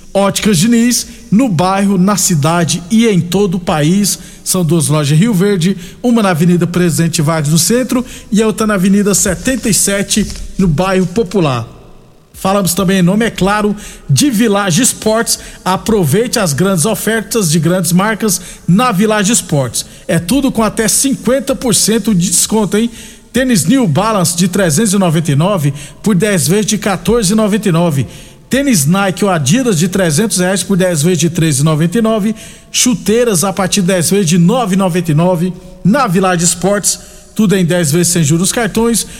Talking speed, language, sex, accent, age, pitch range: 155 wpm, Portuguese, male, Brazilian, 50-69, 175-220 Hz